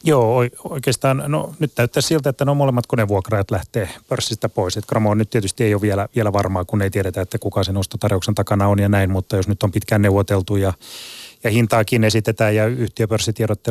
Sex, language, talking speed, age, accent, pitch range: male, Finnish, 200 wpm, 30-49, native, 100-115 Hz